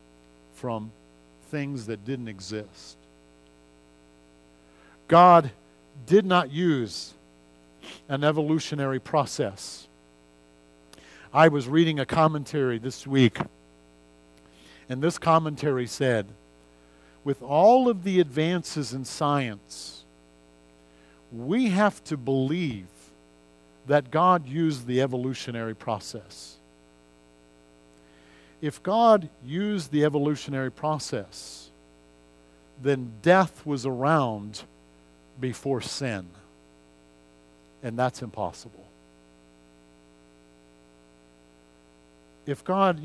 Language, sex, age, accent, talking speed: English, male, 50-69, American, 80 wpm